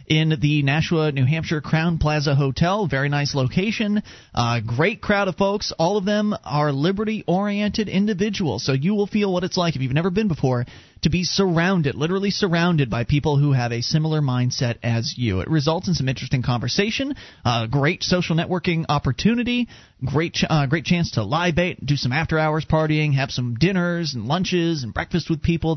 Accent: American